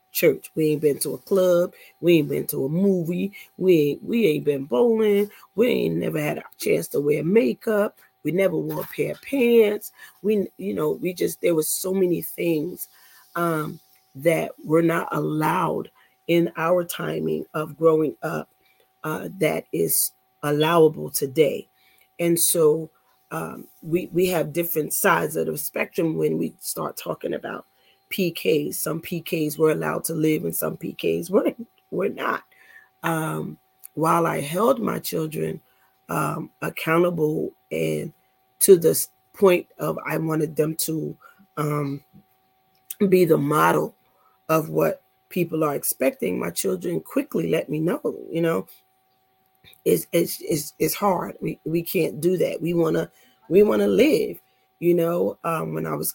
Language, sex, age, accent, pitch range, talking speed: English, female, 40-59, American, 150-190 Hz, 155 wpm